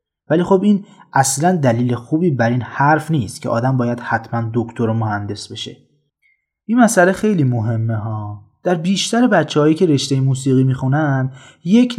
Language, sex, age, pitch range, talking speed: Persian, male, 30-49, 125-180 Hz, 155 wpm